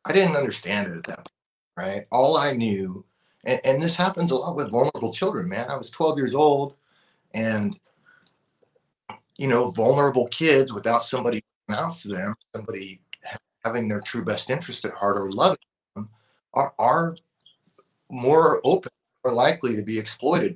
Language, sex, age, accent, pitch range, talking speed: English, male, 30-49, American, 105-160 Hz, 165 wpm